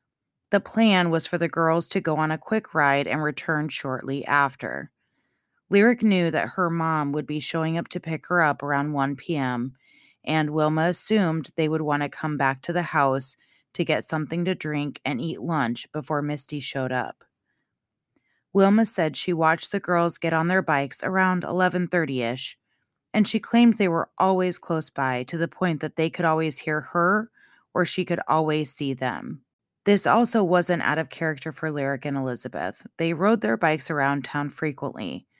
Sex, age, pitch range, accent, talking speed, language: female, 30-49, 145-180 Hz, American, 185 wpm, English